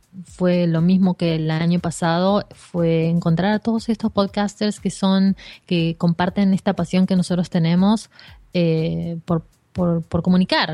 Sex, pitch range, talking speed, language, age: female, 165-190 Hz, 150 wpm, Spanish, 20-39